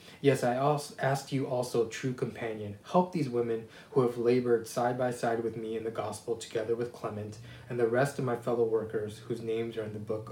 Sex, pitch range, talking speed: male, 115-135 Hz, 215 wpm